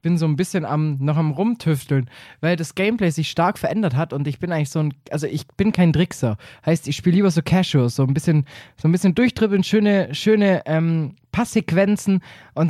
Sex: male